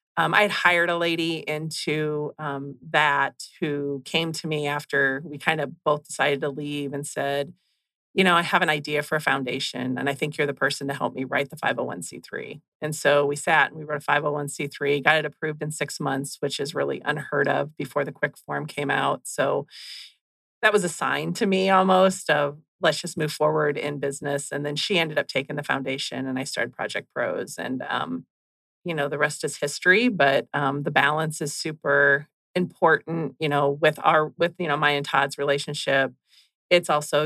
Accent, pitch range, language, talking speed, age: American, 140-165 Hz, English, 205 wpm, 30-49